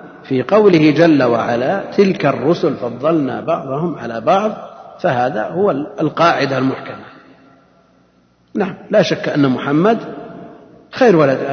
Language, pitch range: Arabic, 130-180 Hz